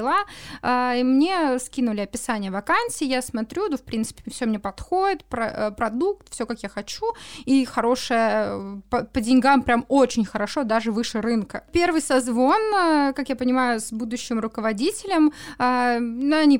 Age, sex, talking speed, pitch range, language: 20-39, female, 145 wpm, 235-300 Hz, Russian